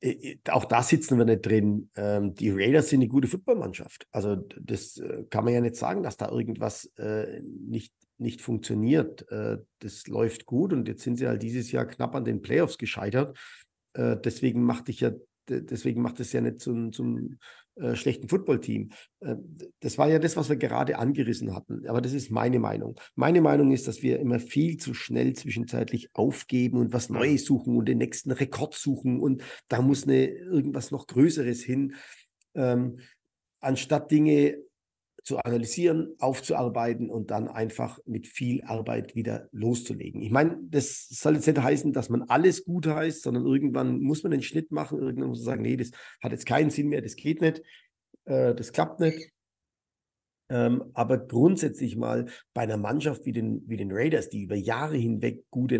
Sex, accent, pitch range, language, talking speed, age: male, German, 115-145 Hz, German, 175 wpm, 50-69